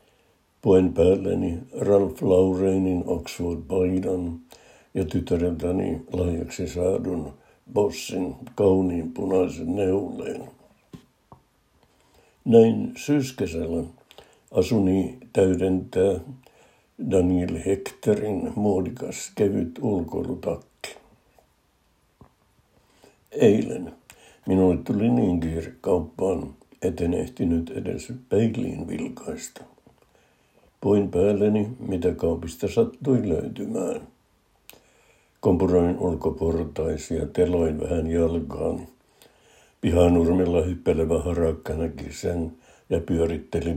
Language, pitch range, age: Finnish, 85-95 Hz, 60-79